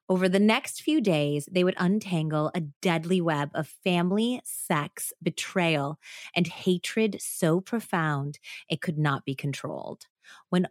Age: 30-49